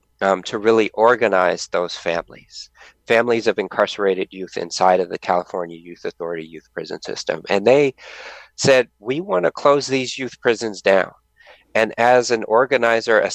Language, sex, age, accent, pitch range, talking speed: English, male, 40-59, American, 95-115 Hz, 155 wpm